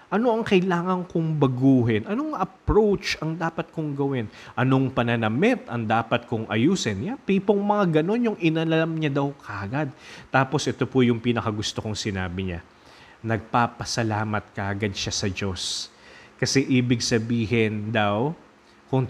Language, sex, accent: English, male, Filipino